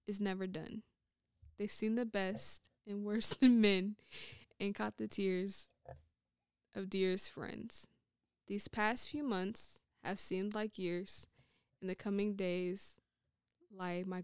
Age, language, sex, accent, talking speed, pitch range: 20-39, English, female, American, 135 wpm, 185-210 Hz